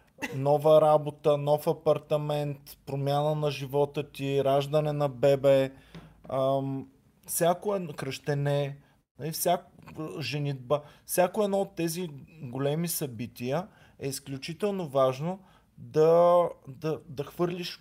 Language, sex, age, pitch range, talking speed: Bulgarian, male, 20-39, 130-165 Hz, 90 wpm